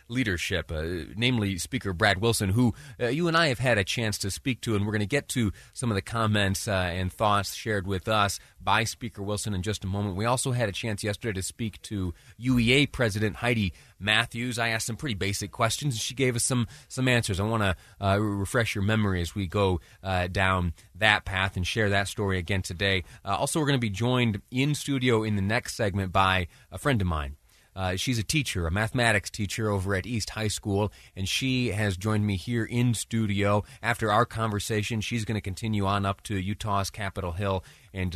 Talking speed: 215 wpm